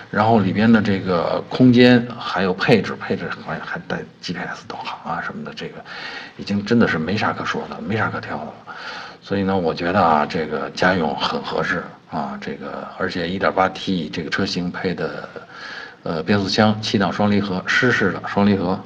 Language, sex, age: Chinese, male, 50-69